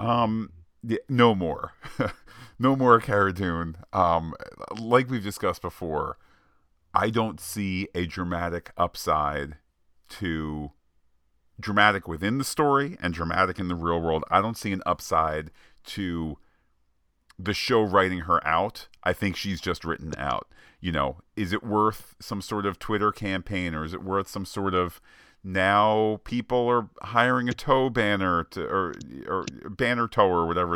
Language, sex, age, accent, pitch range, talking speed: English, male, 40-59, American, 85-110 Hz, 150 wpm